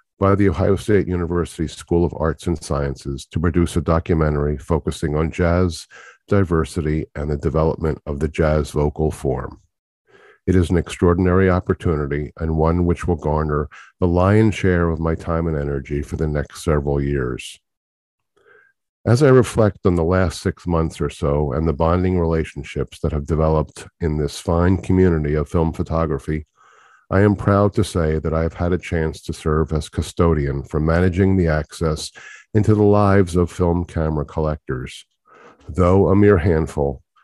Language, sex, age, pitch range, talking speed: English, male, 50-69, 75-90 Hz, 165 wpm